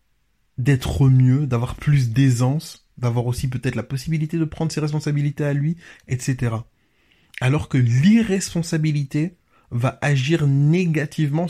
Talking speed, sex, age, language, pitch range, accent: 120 wpm, male, 20-39, French, 120-150 Hz, French